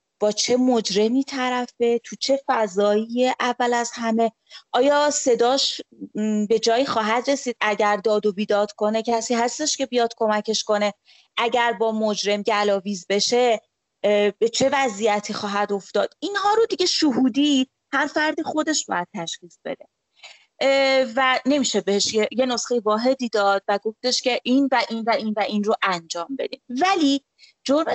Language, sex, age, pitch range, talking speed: Persian, female, 30-49, 210-260 Hz, 145 wpm